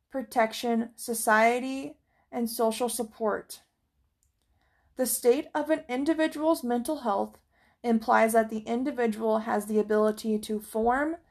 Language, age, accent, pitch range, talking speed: English, 20-39, American, 215-255 Hz, 110 wpm